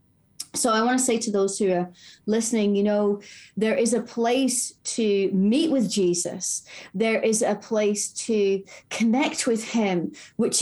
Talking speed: 165 wpm